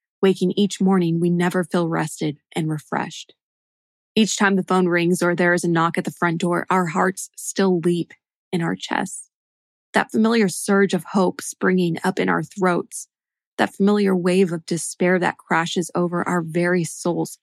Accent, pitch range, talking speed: American, 175-195 Hz, 175 wpm